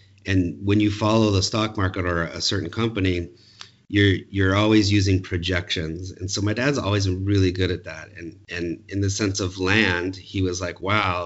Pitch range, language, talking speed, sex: 90-105 Hz, English, 195 wpm, male